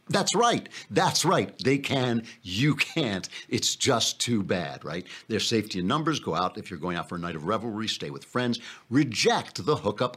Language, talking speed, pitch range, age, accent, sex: English, 200 wpm, 100-140 Hz, 60-79, American, male